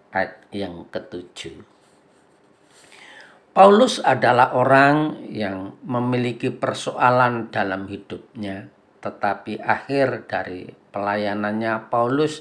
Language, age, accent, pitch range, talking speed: Indonesian, 50-69, native, 105-130 Hz, 75 wpm